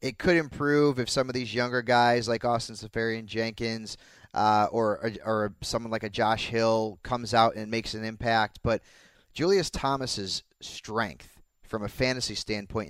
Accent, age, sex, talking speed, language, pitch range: American, 30-49, male, 165 wpm, English, 115-135 Hz